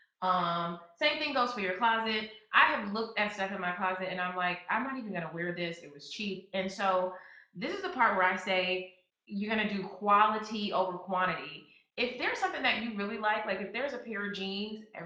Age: 20-39